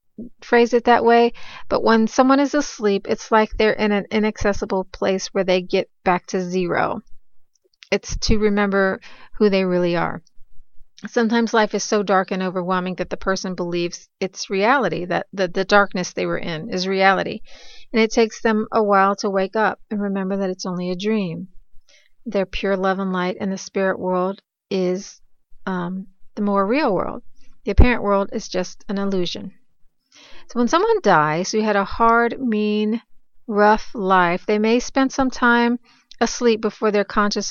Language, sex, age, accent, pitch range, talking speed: English, female, 40-59, American, 185-225 Hz, 175 wpm